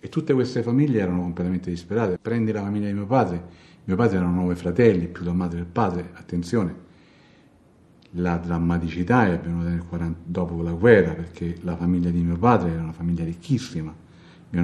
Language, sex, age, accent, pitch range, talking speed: Italian, male, 50-69, native, 85-95 Hz, 170 wpm